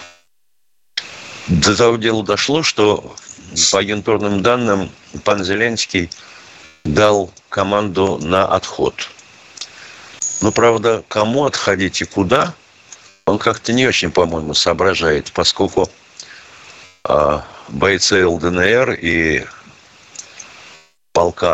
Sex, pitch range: male, 95-125 Hz